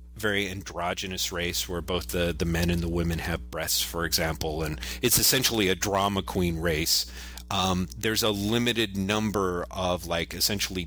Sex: male